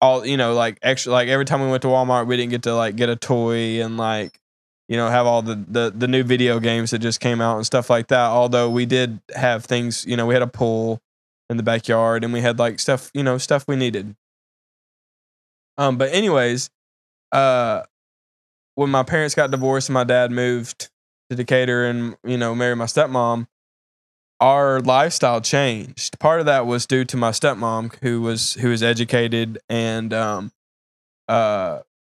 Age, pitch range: 20-39, 115-125 Hz